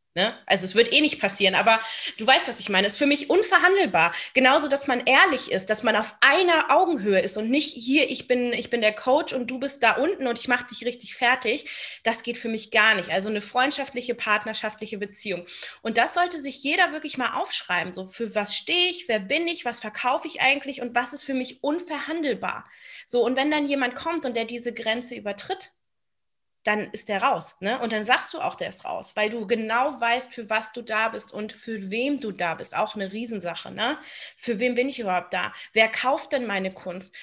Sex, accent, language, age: female, German, German, 20-39